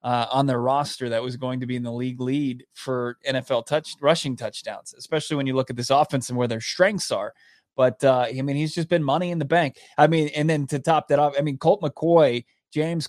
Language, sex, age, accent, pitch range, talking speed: English, male, 30-49, American, 130-155 Hz, 250 wpm